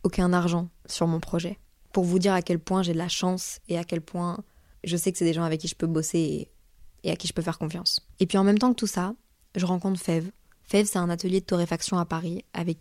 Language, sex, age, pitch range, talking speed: French, female, 20-39, 170-195 Hz, 265 wpm